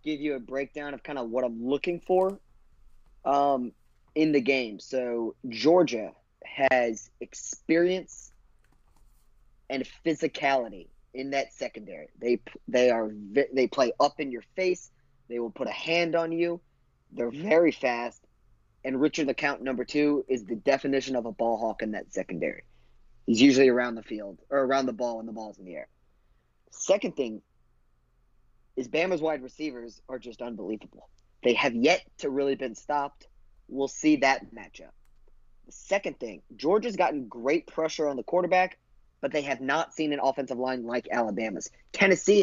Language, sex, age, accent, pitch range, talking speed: English, male, 30-49, American, 120-155 Hz, 160 wpm